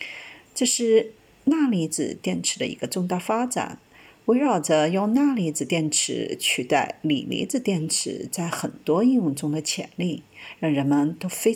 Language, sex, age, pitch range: Chinese, female, 50-69, 170-250 Hz